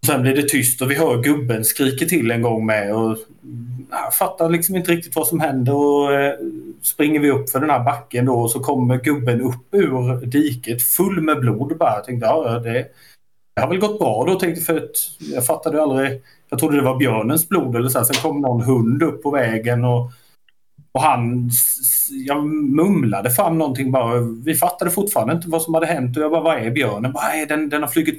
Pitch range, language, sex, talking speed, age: 115-150 Hz, Swedish, male, 220 wpm, 30-49